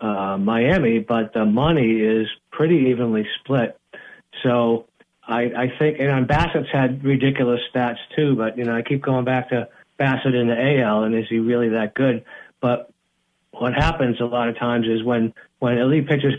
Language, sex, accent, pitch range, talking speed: English, male, American, 110-130 Hz, 180 wpm